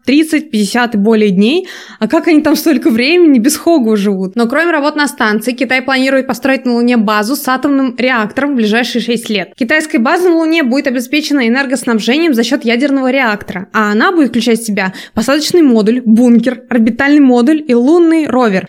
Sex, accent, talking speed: female, native, 185 wpm